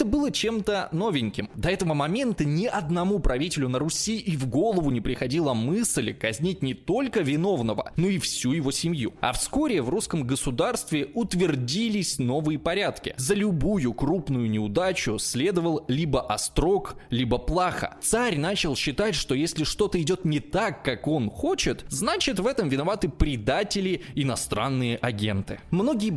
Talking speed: 145 wpm